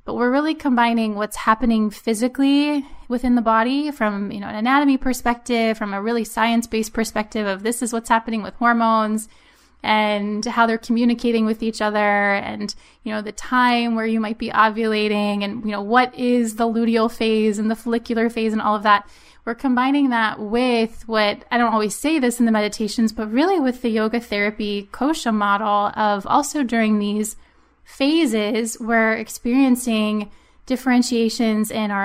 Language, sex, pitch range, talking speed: English, female, 215-245 Hz, 170 wpm